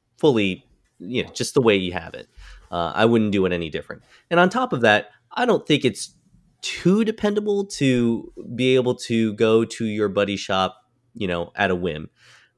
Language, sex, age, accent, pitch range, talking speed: English, male, 20-39, American, 90-120 Hz, 200 wpm